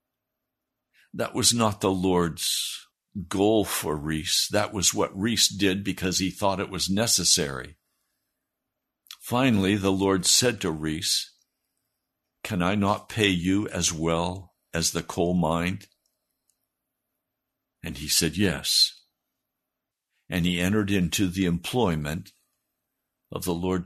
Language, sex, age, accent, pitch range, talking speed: English, male, 60-79, American, 90-115 Hz, 125 wpm